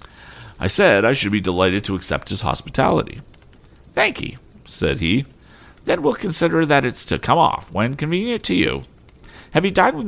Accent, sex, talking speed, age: American, male, 175 wpm, 50-69